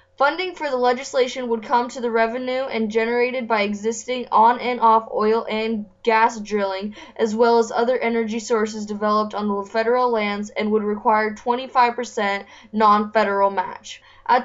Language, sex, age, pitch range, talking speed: English, female, 10-29, 215-255 Hz, 150 wpm